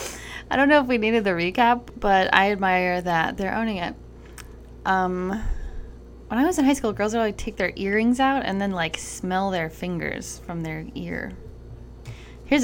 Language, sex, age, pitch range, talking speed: English, female, 10-29, 165-230 Hz, 185 wpm